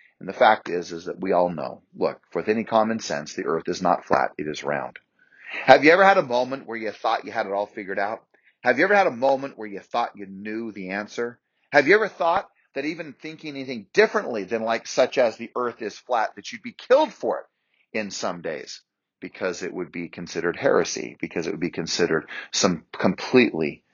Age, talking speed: 40-59, 225 wpm